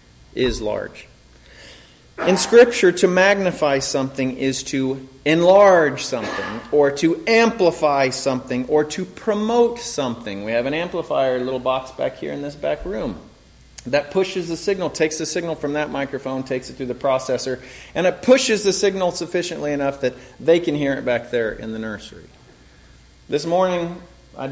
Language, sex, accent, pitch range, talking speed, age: English, male, American, 135-190 Hz, 160 wpm, 30-49